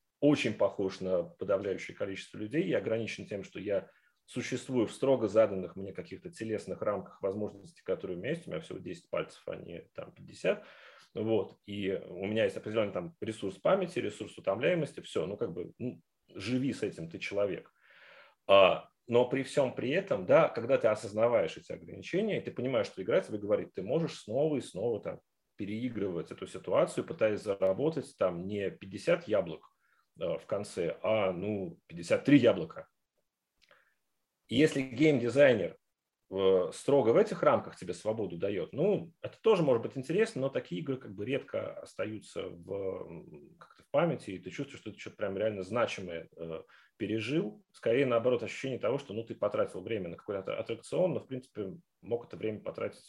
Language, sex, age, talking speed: Russian, male, 30-49, 170 wpm